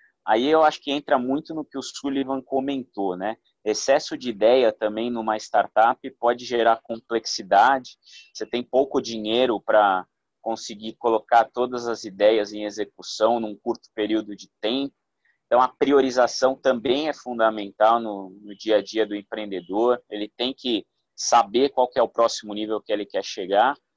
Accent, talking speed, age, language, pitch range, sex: Brazilian, 165 wpm, 20-39, Portuguese, 115-140 Hz, male